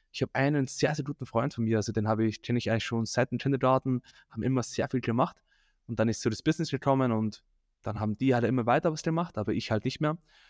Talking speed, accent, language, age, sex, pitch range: 255 wpm, German, German, 10-29, male, 115-135 Hz